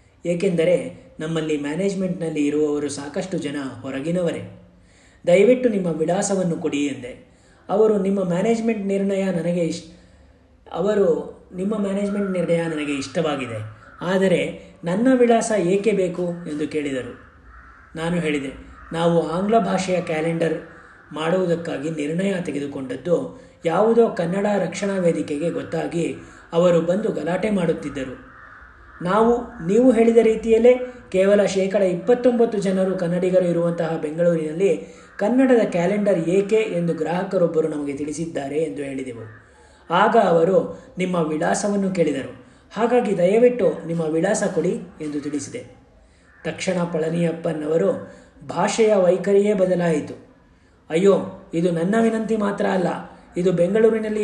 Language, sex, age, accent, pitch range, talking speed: Kannada, male, 30-49, native, 155-200 Hz, 105 wpm